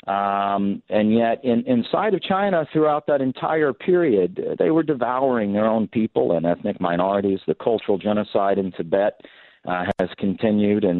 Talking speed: 145 wpm